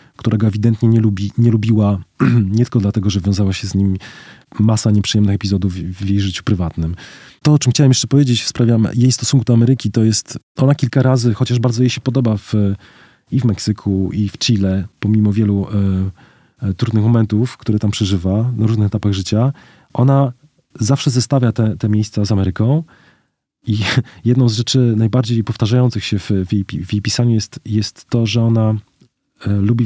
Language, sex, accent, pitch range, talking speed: Polish, male, native, 105-120 Hz, 180 wpm